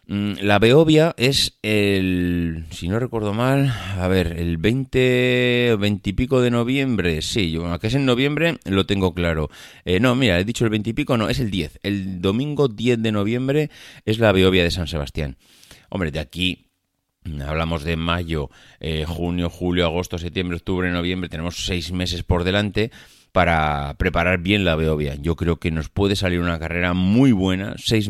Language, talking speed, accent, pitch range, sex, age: Spanish, 180 wpm, Spanish, 85-105 Hz, male, 30-49